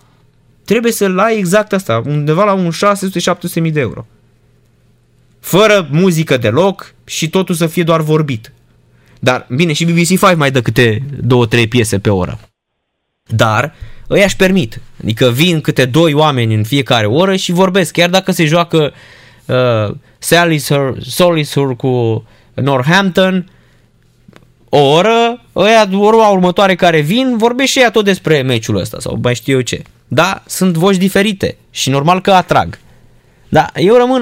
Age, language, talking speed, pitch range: 20-39, Romanian, 145 wpm, 130-185 Hz